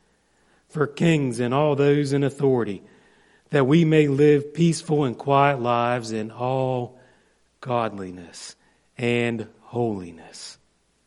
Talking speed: 110 wpm